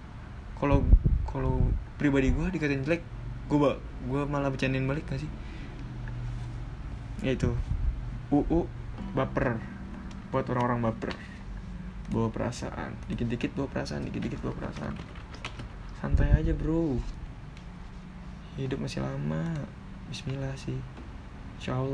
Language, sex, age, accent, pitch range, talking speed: Indonesian, male, 20-39, native, 90-135 Hz, 100 wpm